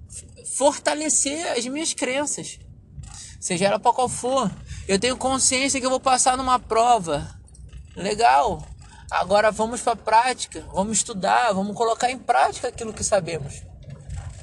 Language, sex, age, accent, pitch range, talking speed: Portuguese, male, 20-39, Brazilian, 155-210 Hz, 135 wpm